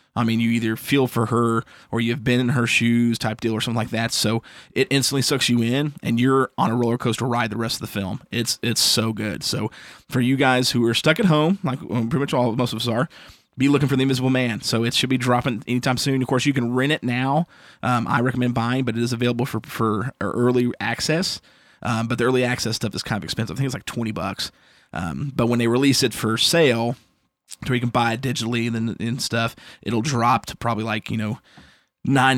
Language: English